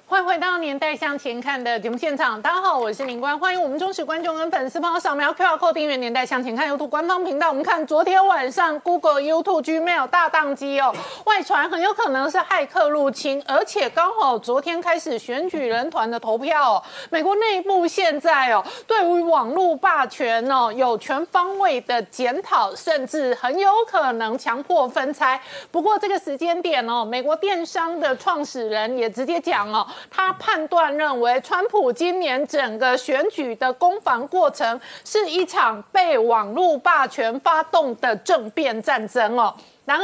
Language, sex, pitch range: Chinese, female, 265-345 Hz